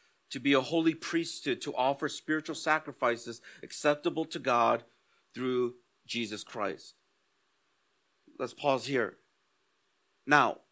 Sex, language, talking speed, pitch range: male, English, 105 wpm, 130-165 Hz